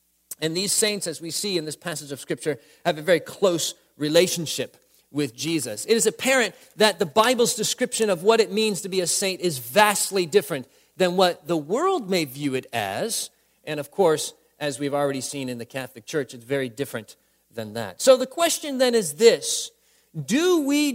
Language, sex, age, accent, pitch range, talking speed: English, male, 40-59, American, 165-250 Hz, 195 wpm